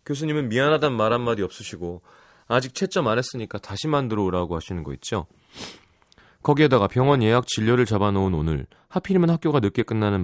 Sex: male